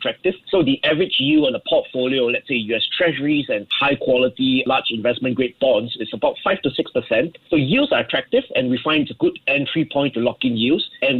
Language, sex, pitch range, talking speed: English, male, 125-165 Hz, 205 wpm